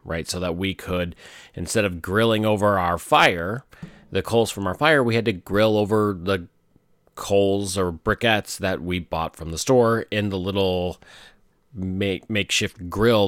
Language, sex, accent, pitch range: English, male, American, 95-115 Hz